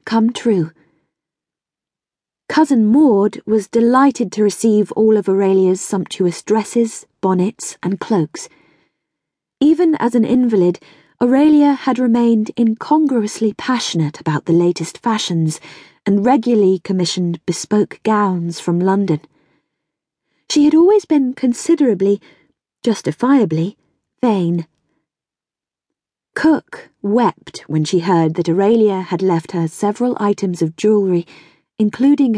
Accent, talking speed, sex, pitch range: British, 105 wpm, female, 175-245 Hz